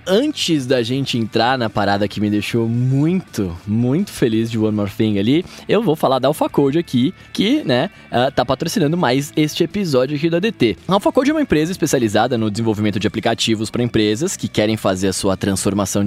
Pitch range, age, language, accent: 115-190 Hz, 20-39, Portuguese, Brazilian